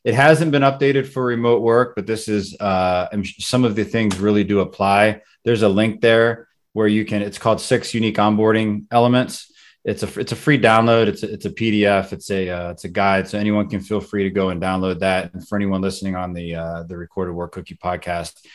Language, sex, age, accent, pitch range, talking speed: English, male, 30-49, American, 95-110 Hz, 225 wpm